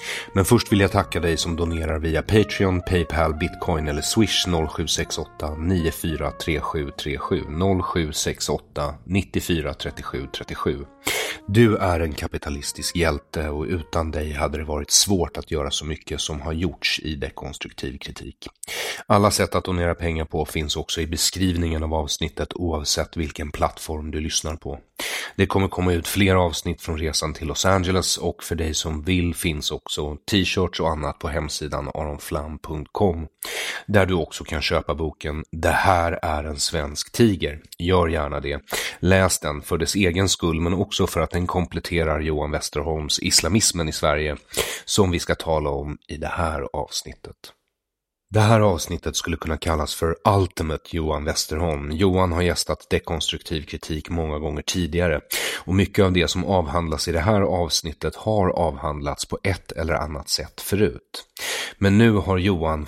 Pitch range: 75-90 Hz